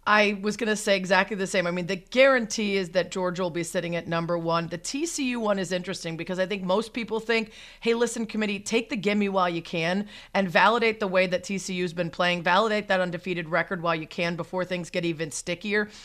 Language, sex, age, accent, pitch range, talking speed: English, female, 40-59, American, 170-210 Hz, 230 wpm